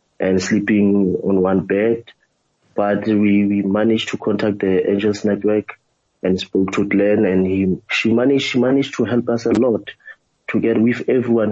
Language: English